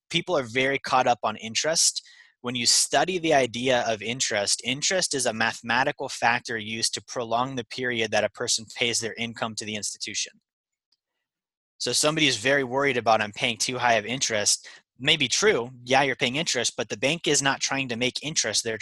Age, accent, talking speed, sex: 20-39, American, 200 wpm, male